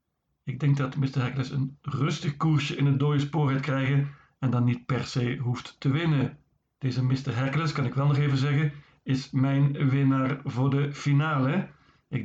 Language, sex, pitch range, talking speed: Dutch, male, 130-145 Hz, 185 wpm